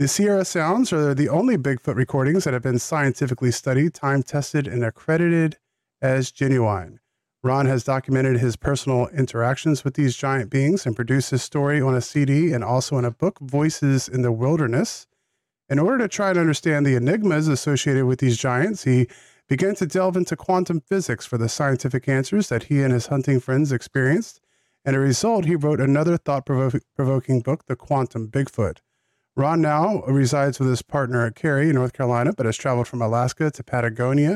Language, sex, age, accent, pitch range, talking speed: English, male, 40-59, American, 125-155 Hz, 180 wpm